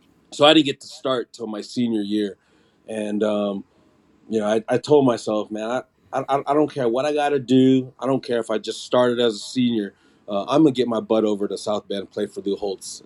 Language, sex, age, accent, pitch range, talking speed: English, male, 30-49, American, 105-125 Hz, 245 wpm